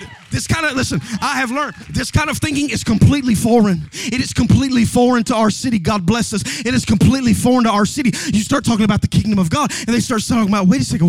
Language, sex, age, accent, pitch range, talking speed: English, male, 30-49, American, 170-235 Hz, 255 wpm